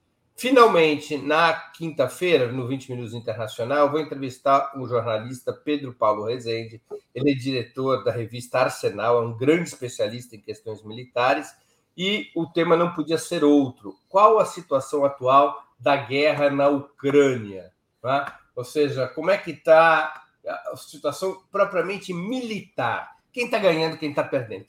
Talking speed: 140 wpm